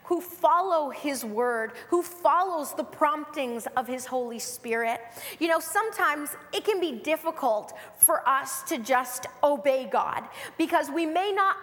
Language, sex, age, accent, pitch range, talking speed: English, female, 30-49, American, 245-320 Hz, 150 wpm